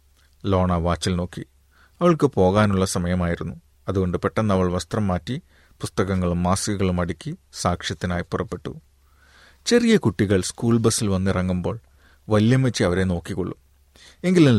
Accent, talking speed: native, 105 wpm